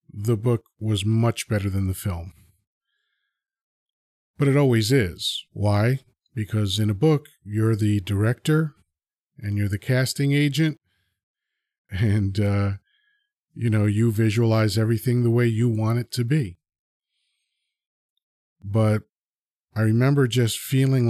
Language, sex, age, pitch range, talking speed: English, male, 40-59, 100-120 Hz, 125 wpm